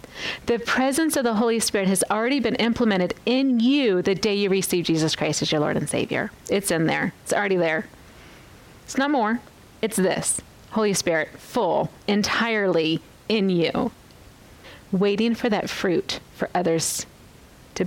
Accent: American